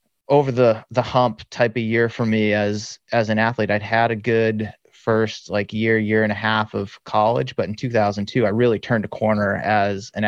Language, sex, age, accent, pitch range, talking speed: English, male, 30-49, American, 105-120 Hz, 210 wpm